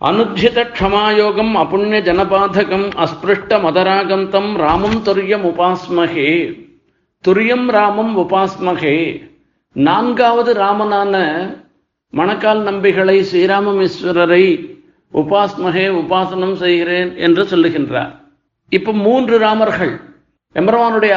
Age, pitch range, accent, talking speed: 50-69, 175-215 Hz, native, 75 wpm